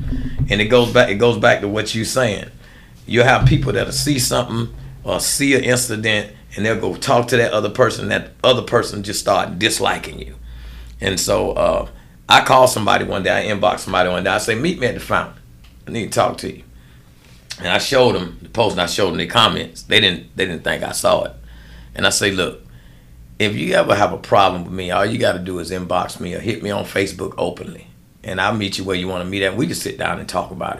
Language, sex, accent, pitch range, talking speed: English, male, American, 85-115 Hz, 245 wpm